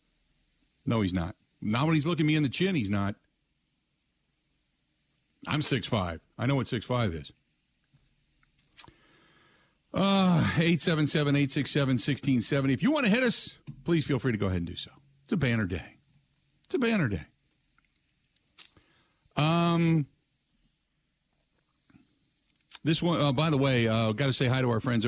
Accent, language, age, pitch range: American, English, 50-69, 110-145 Hz